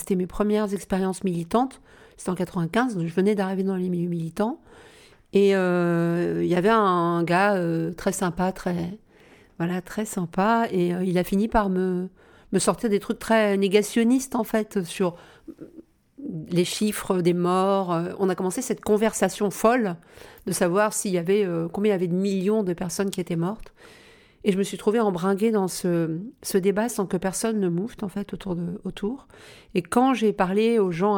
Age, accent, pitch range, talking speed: 50-69, French, 180-215 Hz, 180 wpm